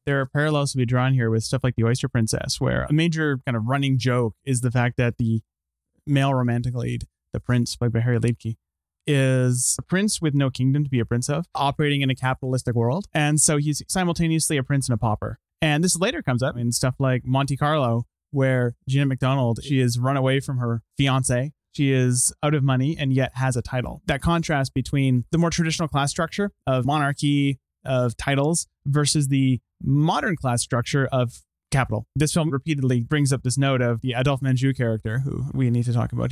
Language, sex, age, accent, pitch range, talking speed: English, male, 30-49, American, 125-145 Hz, 205 wpm